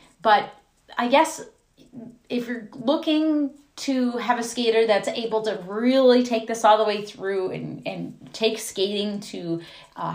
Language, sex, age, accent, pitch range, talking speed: English, female, 30-49, American, 185-245 Hz, 155 wpm